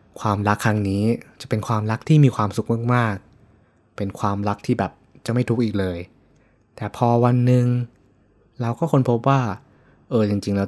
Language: Thai